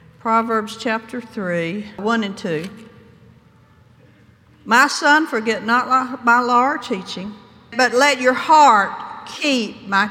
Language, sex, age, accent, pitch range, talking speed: English, female, 60-79, American, 205-265 Hz, 120 wpm